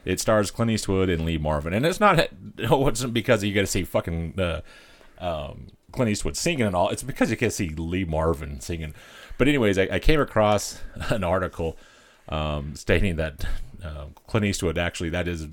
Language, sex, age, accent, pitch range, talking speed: English, male, 30-49, American, 80-95 Hz, 195 wpm